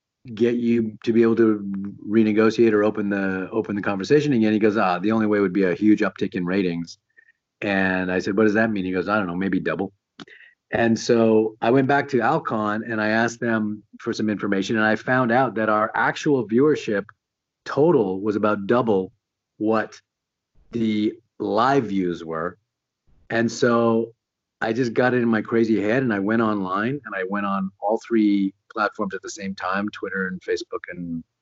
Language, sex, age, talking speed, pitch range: English, male, 40-59, 195 wpm, 100-115 Hz